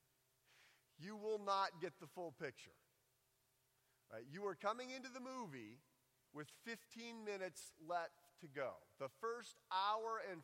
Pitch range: 150-200 Hz